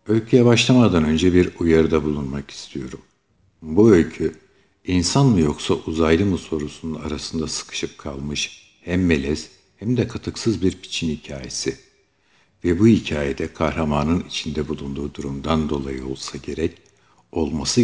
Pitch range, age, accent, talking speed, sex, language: 75-95 Hz, 60-79, native, 125 wpm, male, Turkish